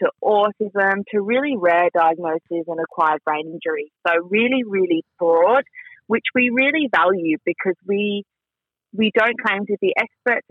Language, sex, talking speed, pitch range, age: English, female, 150 wpm, 170-215 Hz, 30-49